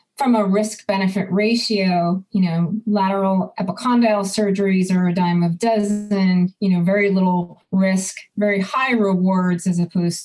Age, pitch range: 30-49, 180-215 Hz